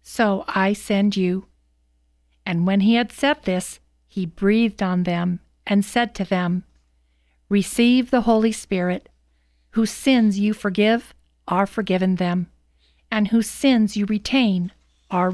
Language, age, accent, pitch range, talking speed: English, 50-69, American, 175-225 Hz, 135 wpm